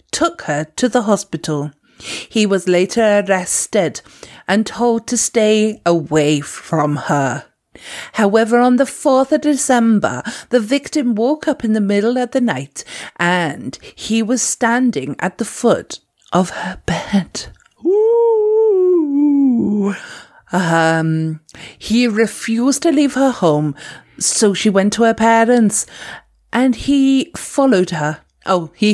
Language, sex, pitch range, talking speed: English, female, 165-245 Hz, 125 wpm